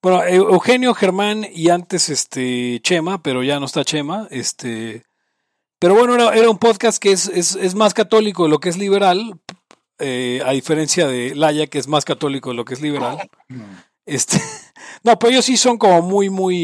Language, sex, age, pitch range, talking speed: Spanish, male, 40-59, 145-205 Hz, 190 wpm